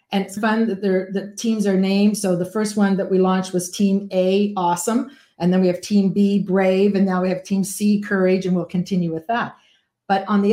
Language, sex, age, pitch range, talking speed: English, female, 50-69, 175-200 Hz, 235 wpm